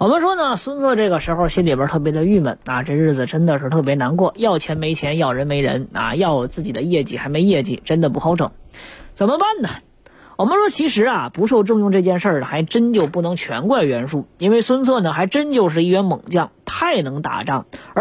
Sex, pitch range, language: female, 160-260 Hz, Chinese